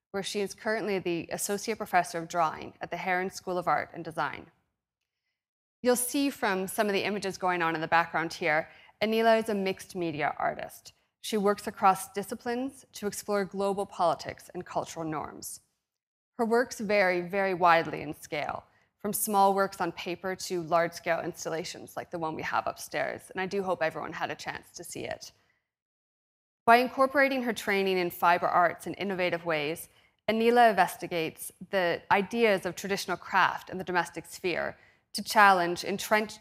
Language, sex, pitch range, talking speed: English, female, 175-210 Hz, 170 wpm